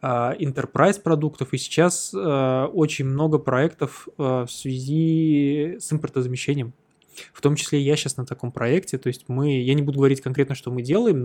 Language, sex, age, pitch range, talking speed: Russian, male, 20-39, 130-165 Hz, 165 wpm